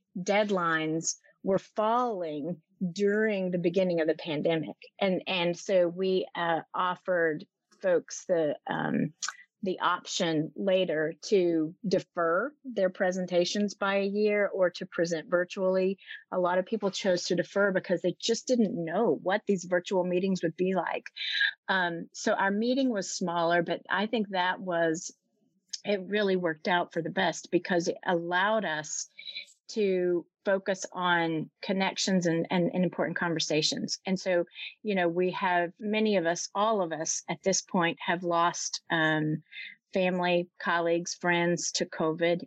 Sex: female